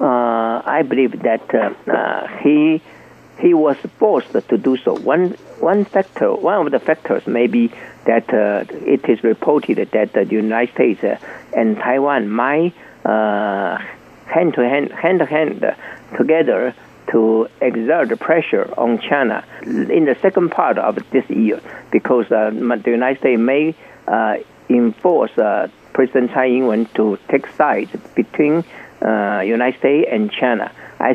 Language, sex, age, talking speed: German, male, 60-79, 145 wpm